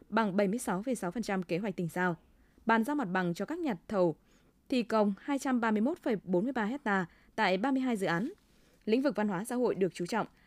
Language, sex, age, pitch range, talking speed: Vietnamese, female, 20-39, 190-245 Hz, 180 wpm